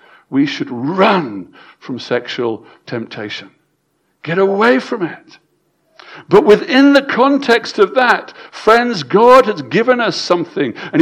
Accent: British